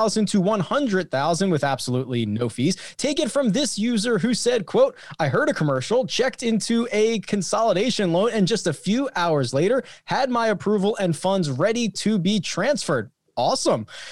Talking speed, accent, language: 165 wpm, American, English